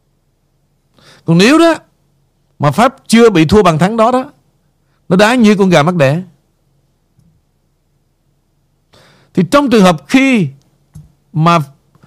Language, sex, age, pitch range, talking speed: Vietnamese, male, 50-69, 150-220 Hz, 125 wpm